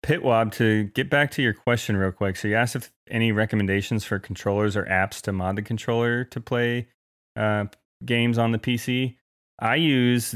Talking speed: 185 wpm